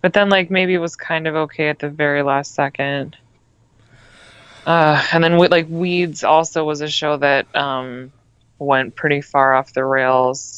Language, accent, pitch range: English, American, 125-155 Hz